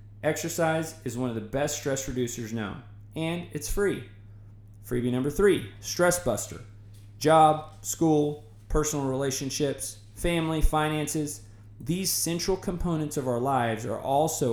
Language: English